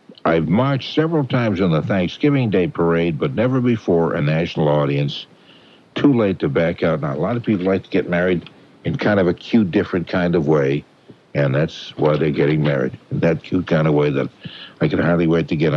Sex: male